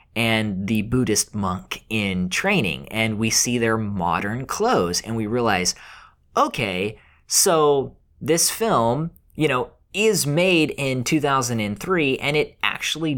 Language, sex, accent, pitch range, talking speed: English, male, American, 110-150 Hz, 125 wpm